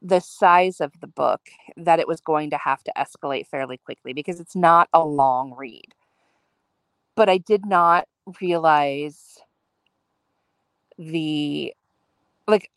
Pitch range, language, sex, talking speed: 145-185 Hz, English, female, 130 wpm